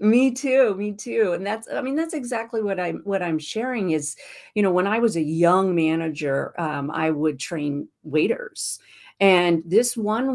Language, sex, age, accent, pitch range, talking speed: English, female, 50-69, American, 160-215 Hz, 185 wpm